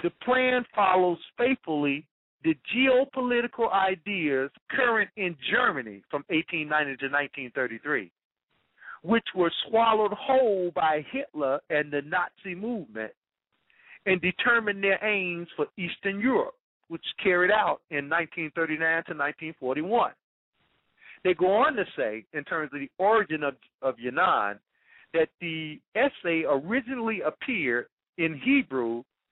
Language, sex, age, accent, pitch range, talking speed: English, male, 50-69, American, 145-210 Hz, 135 wpm